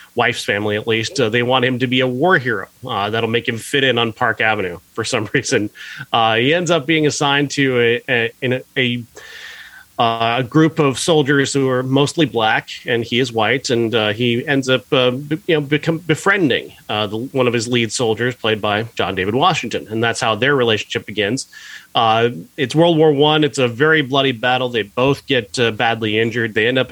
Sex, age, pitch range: male, 30-49, 115-140 Hz